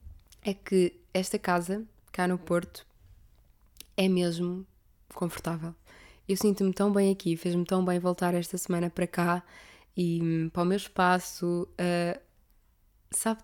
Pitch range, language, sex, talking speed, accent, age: 175-200 Hz, Portuguese, female, 135 wpm, Brazilian, 20-39